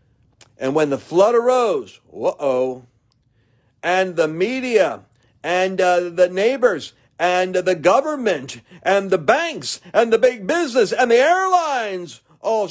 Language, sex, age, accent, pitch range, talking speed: English, male, 50-69, American, 125-195 Hz, 130 wpm